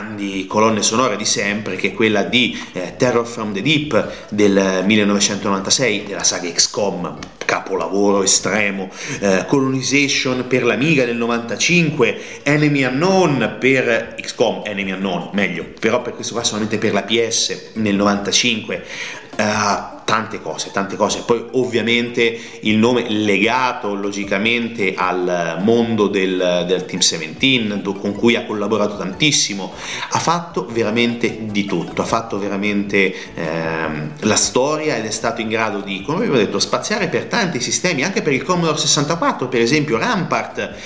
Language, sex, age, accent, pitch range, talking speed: Italian, male, 30-49, native, 100-145 Hz, 150 wpm